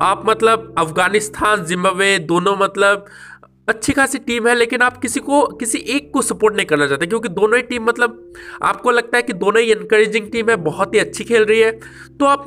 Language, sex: Hindi, male